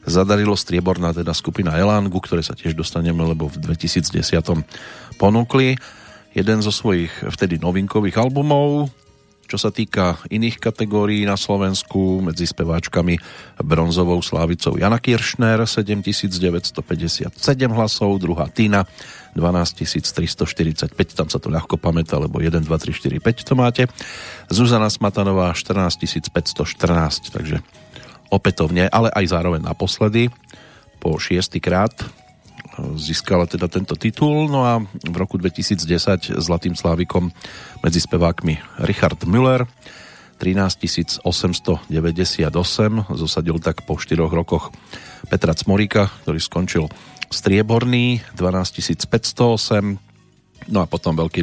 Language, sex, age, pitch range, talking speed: Slovak, male, 40-59, 85-110 Hz, 110 wpm